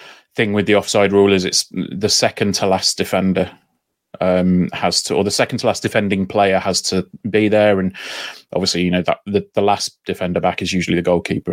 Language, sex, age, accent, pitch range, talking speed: English, male, 30-49, British, 95-115 Hz, 210 wpm